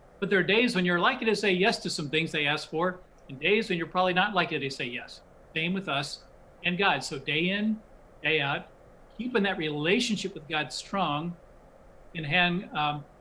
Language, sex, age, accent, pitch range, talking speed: English, male, 50-69, American, 150-190 Hz, 205 wpm